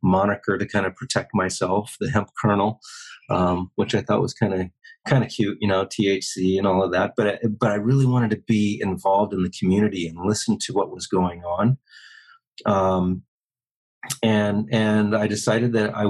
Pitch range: 95-110 Hz